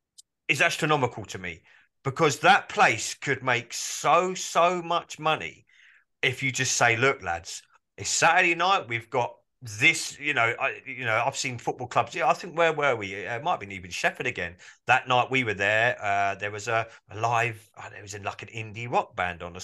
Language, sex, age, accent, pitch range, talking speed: English, male, 30-49, British, 120-165 Hz, 205 wpm